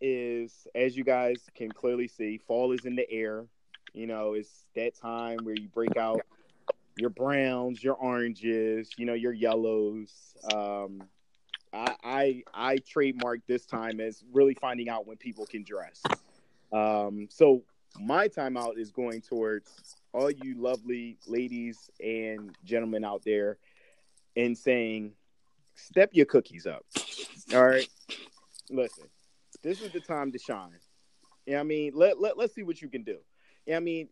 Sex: male